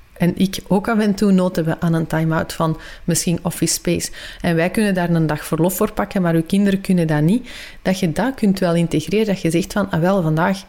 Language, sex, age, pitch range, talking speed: Dutch, female, 30-49, 175-215 Hz, 240 wpm